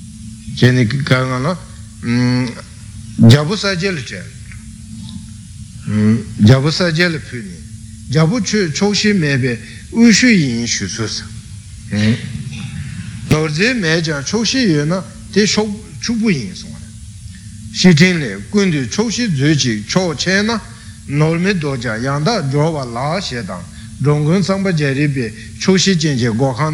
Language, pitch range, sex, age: Italian, 110-165 Hz, male, 60-79